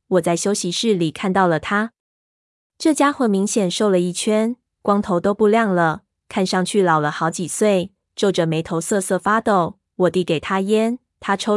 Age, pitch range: 20-39, 175-210 Hz